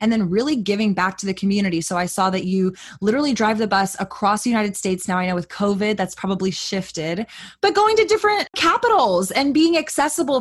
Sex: female